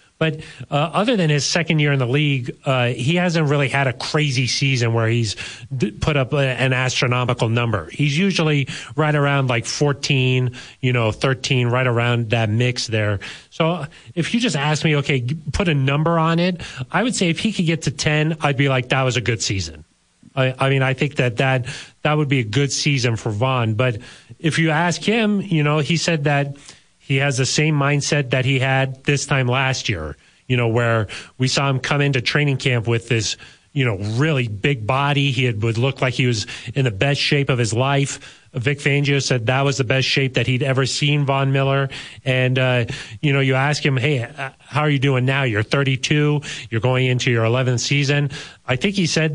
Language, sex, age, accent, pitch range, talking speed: English, male, 30-49, American, 125-150 Hz, 215 wpm